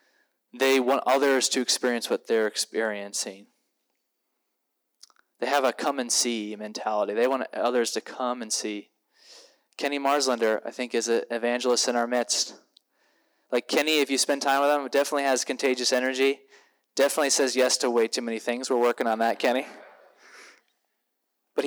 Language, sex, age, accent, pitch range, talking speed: English, male, 20-39, American, 120-145 Hz, 160 wpm